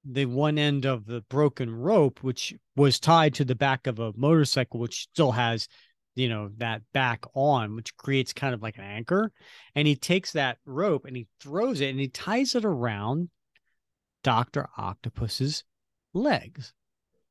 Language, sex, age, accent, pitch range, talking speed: English, male, 40-59, American, 120-165 Hz, 165 wpm